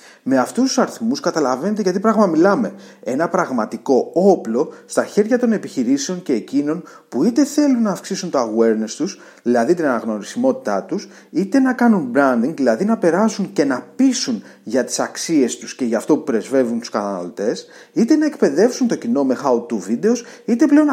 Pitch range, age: 175-255 Hz, 30-49